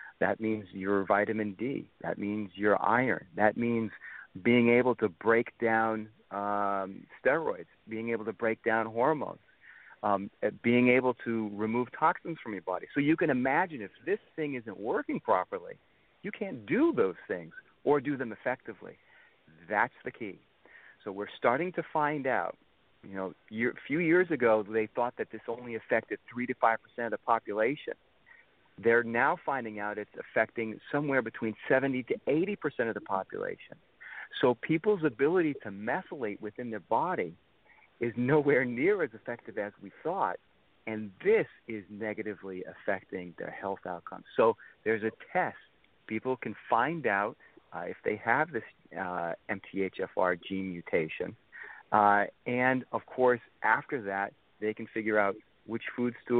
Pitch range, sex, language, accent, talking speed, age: 105-125 Hz, male, English, American, 155 wpm, 40-59